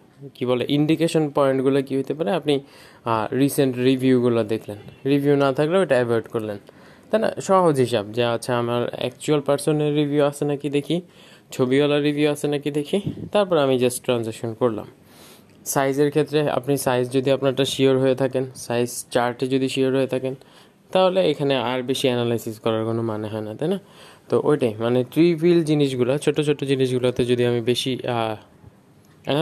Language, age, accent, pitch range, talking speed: Bengali, 20-39, native, 120-145 Hz, 135 wpm